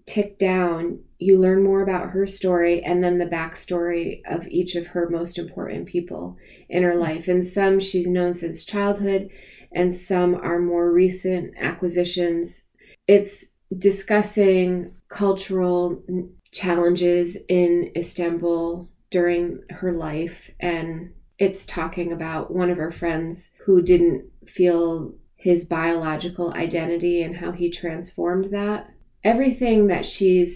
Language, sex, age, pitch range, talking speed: English, female, 20-39, 170-190 Hz, 130 wpm